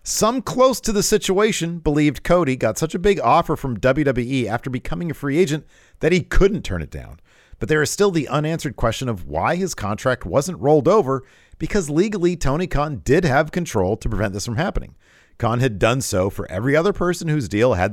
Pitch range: 105-160 Hz